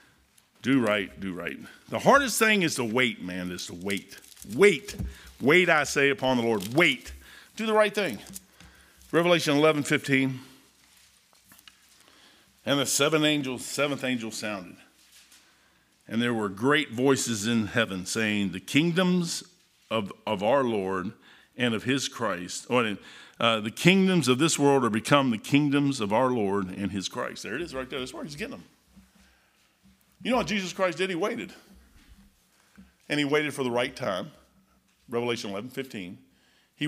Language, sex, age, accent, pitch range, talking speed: English, male, 50-69, American, 120-160 Hz, 165 wpm